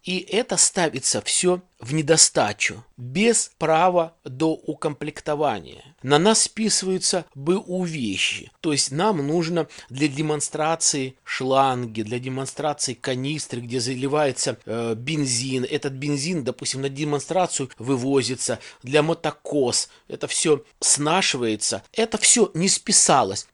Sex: male